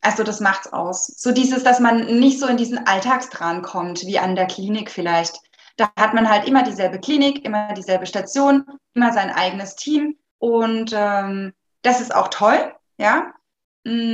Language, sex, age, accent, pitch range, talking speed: German, female, 20-39, German, 195-245 Hz, 175 wpm